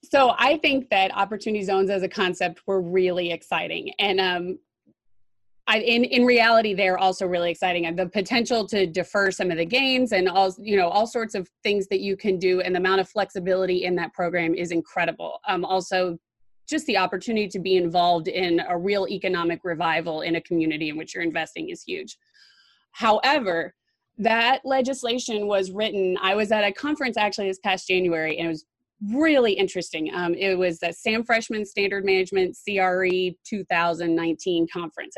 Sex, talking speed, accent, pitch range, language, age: female, 180 wpm, American, 175-220 Hz, English, 30-49